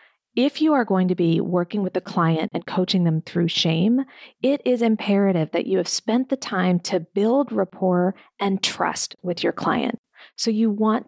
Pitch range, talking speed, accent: 180-240 Hz, 190 wpm, American